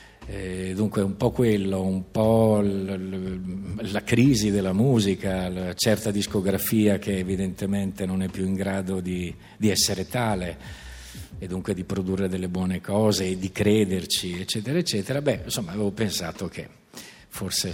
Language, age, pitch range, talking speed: Italian, 50-69, 90-105 Hz, 140 wpm